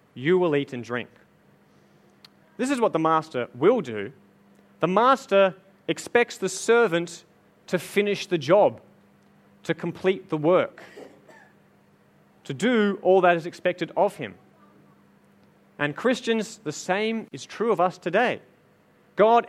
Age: 30-49